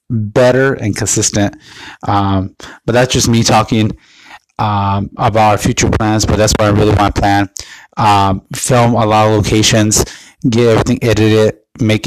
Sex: male